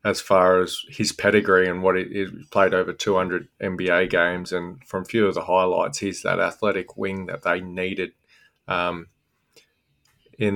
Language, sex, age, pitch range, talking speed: English, male, 20-39, 90-100 Hz, 175 wpm